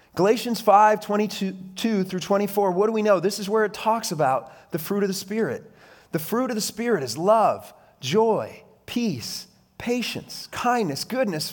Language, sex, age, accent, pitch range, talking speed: English, male, 30-49, American, 160-215 Hz, 165 wpm